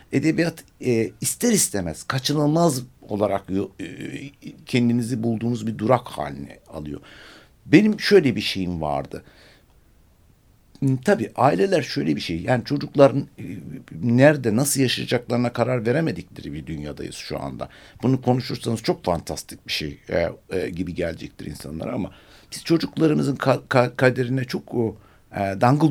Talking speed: 110 wpm